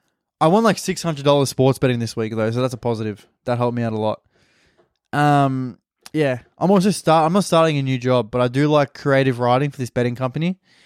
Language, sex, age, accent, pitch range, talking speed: English, male, 20-39, Australian, 125-155 Hz, 220 wpm